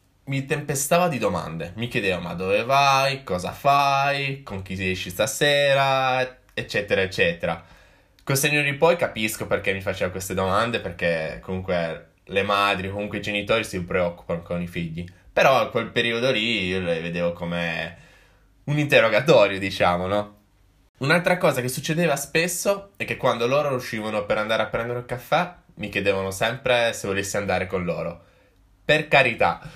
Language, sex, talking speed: Italian, male, 160 wpm